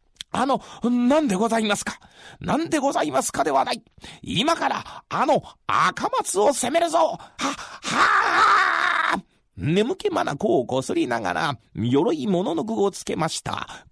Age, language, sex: 40-59, Japanese, male